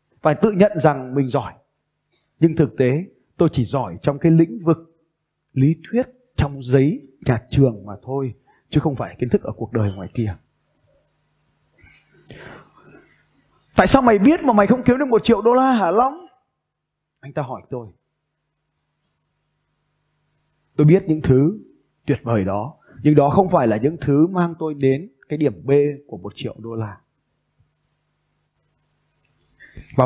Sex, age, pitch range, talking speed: male, 20-39, 130-165 Hz, 160 wpm